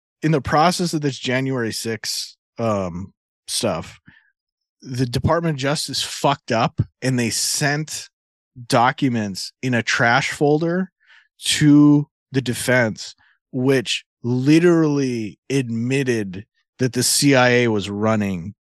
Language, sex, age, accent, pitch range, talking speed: English, male, 20-39, American, 105-135 Hz, 110 wpm